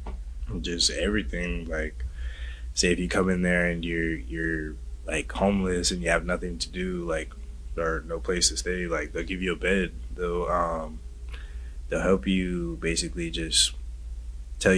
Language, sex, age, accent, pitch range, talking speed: English, male, 20-39, American, 65-90 Hz, 160 wpm